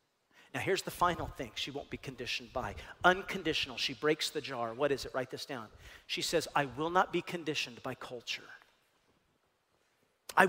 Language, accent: English, American